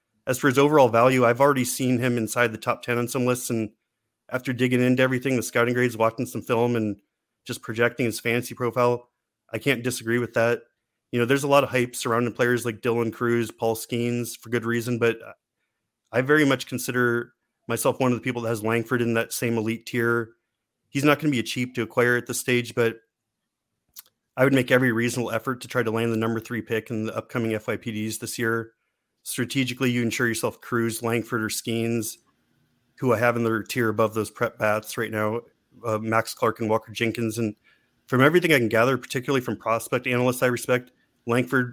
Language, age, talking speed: English, 30-49, 210 wpm